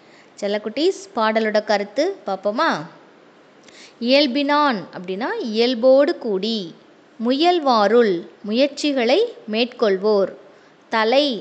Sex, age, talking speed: female, 20-39, 65 wpm